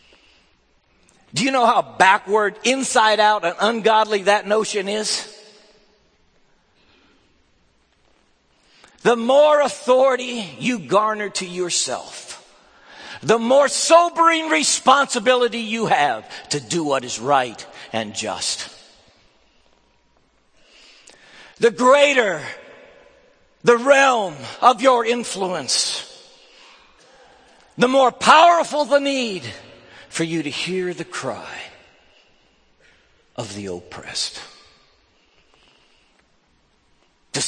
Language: English